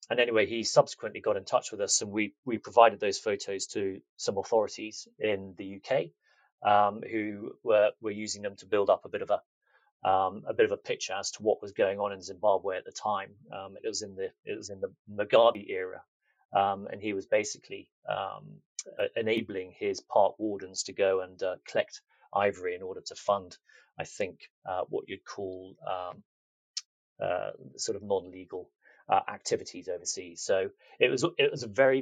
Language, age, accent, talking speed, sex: English, 30-49, British, 195 wpm, male